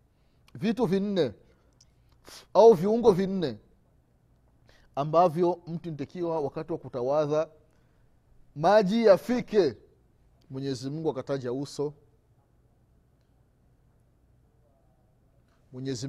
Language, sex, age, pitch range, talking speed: Swahili, male, 30-49, 140-190 Hz, 65 wpm